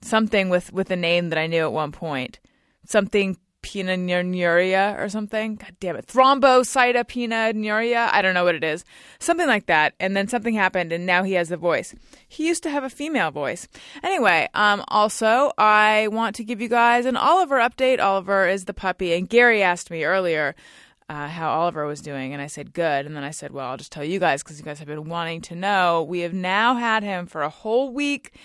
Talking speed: 215 wpm